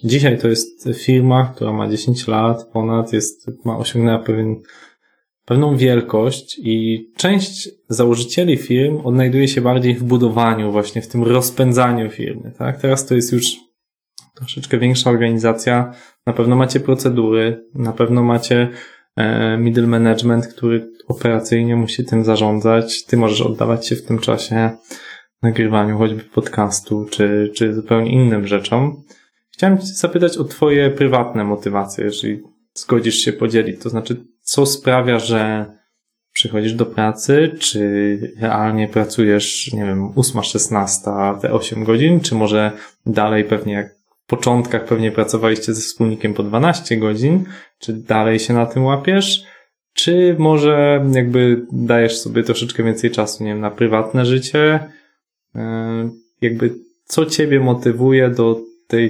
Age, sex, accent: 20-39, male, native